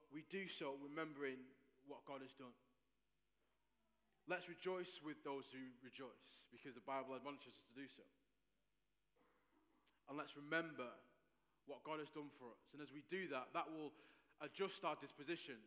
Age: 20-39